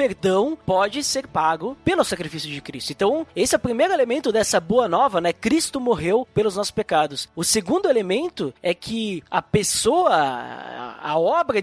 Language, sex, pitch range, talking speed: Portuguese, male, 175-245 Hz, 165 wpm